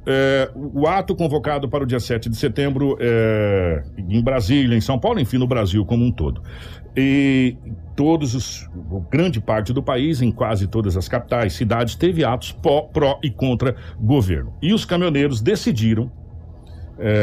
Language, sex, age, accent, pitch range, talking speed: Portuguese, male, 60-79, Brazilian, 105-150 Hz, 165 wpm